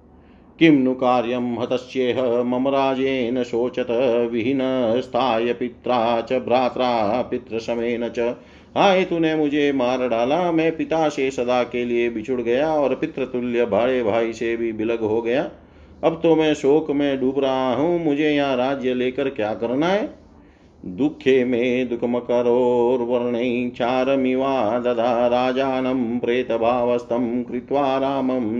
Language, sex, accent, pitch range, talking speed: Hindi, male, native, 120-135 Hz, 115 wpm